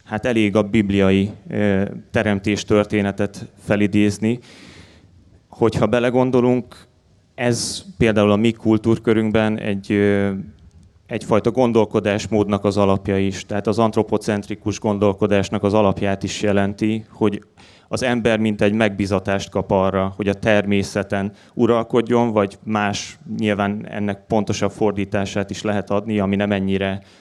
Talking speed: 115 wpm